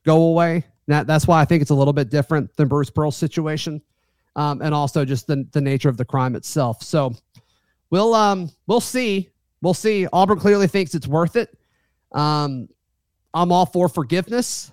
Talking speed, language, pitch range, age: 185 wpm, English, 145-175 Hz, 30-49